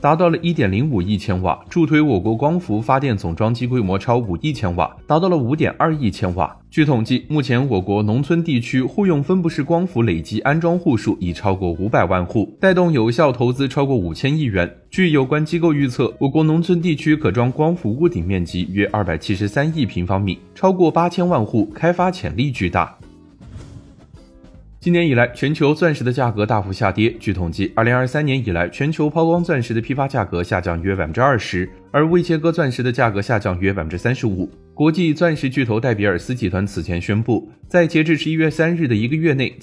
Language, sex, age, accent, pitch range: Chinese, male, 20-39, native, 100-155 Hz